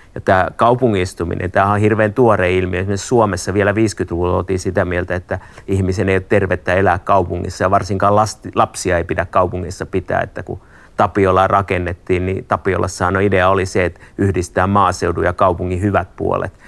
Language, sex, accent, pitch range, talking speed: Finnish, male, native, 90-105 Hz, 165 wpm